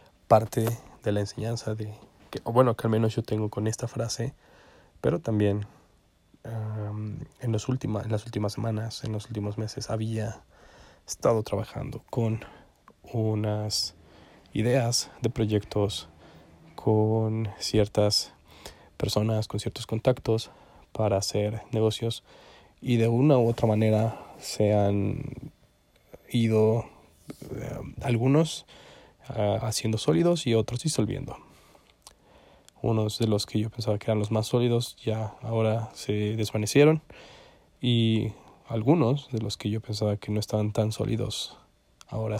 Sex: male